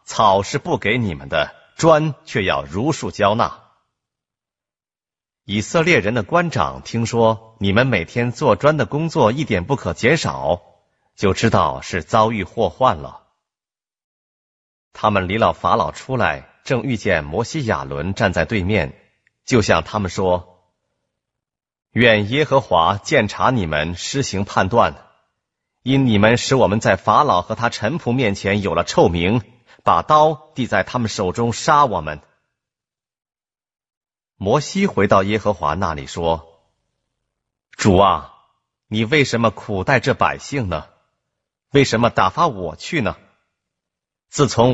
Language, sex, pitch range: Korean, male, 90-130 Hz